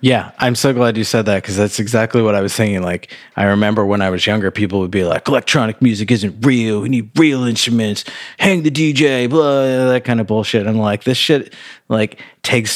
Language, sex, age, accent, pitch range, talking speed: English, male, 30-49, American, 100-120 Hz, 220 wpm